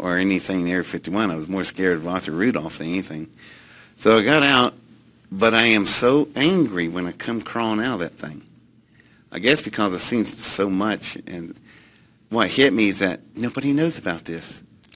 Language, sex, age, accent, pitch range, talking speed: Russian, male, 60-79, American, 90-115 Hz, 190 wpm